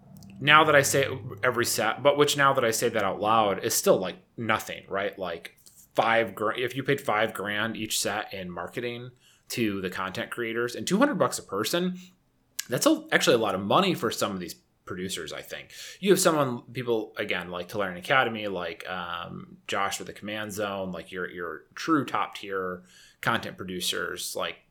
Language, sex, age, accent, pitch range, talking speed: English, male, 30-49, American, 95-125 Hz, 190 wpm